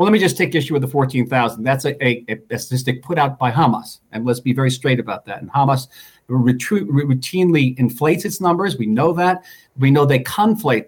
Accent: American